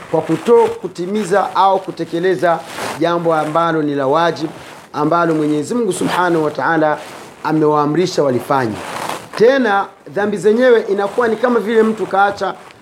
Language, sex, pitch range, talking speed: Swahili, male, 170-220 Hz, 125 wpm